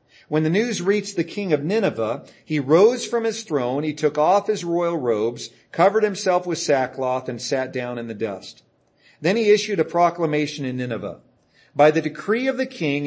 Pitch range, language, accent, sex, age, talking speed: 130-180 Hz, English, American, male, 40-59, 195 wpm